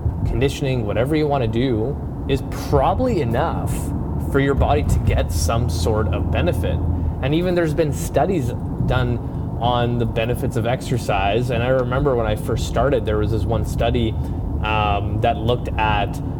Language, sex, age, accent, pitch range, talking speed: English, male, 20-39, American, 100-135 Hz, 160 wpm